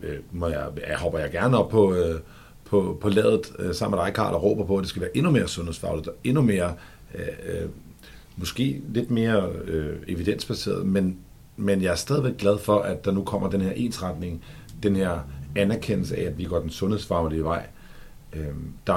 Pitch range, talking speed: 85-105 Hz, 185 wpm